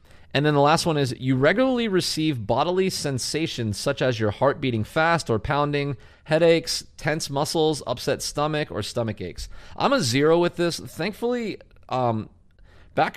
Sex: male